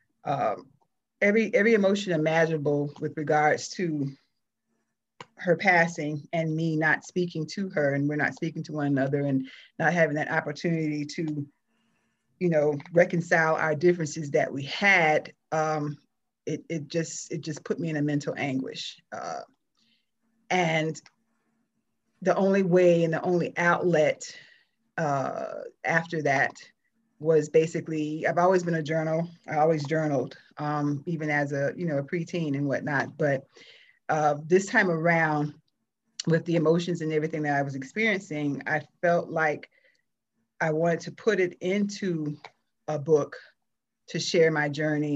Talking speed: 145 wpm